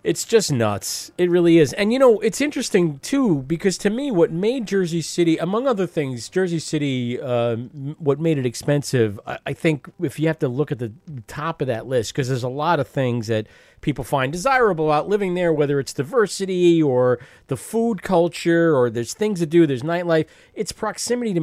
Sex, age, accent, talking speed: male, 40-59, American, 205 wpm